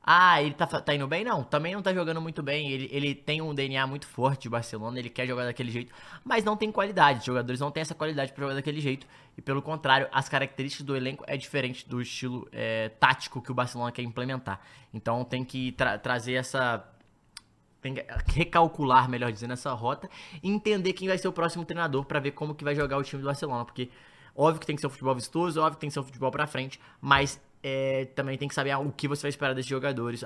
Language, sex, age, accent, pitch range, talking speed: Portuguese, male, 20-39, Brazilian, 125-150 Hz, 240 wpm